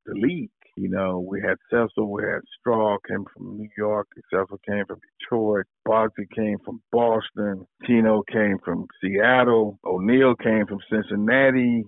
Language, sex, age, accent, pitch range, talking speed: English, male, 50-69, American, 100-115 Hz, 150 wpm